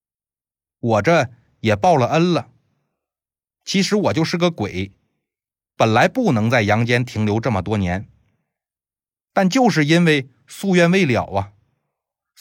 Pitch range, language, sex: 100-155 Hz, Chinese, male